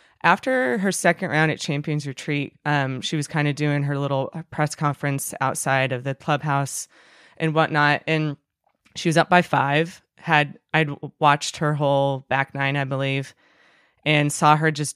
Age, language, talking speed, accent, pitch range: 20-39, English, 170 wpm, American, 145-175 Hz